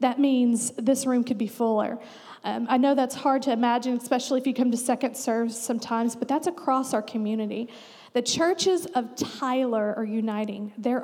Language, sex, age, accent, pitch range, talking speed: English, female, 40-59, American, 230-270 Hz, 185 wpm